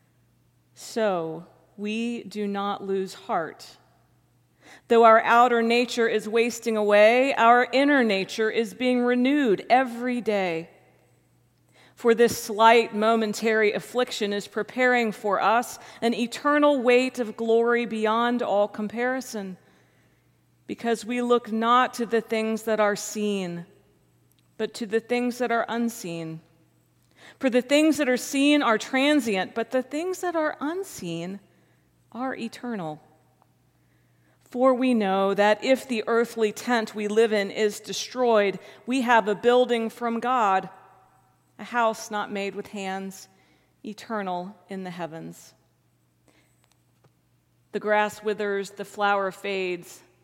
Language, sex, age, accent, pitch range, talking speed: English, female, 40-59, American, 190-240 Hz, 125 wpm